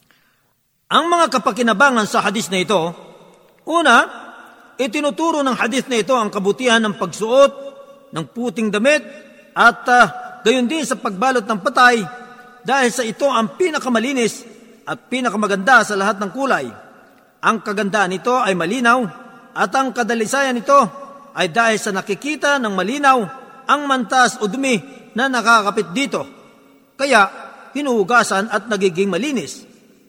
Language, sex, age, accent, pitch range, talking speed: Filipino, male, 50-69, native, 205-265 Hz, 130 wpm